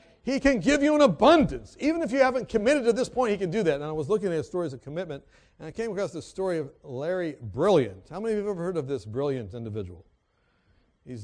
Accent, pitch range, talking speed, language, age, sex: American, 150-220 Hz, 260 wpm, English, 60-79, male